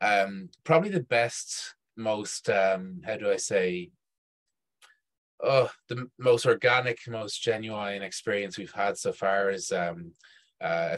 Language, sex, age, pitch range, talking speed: English, male, 20-39, 95-120 Hz, 135 wpm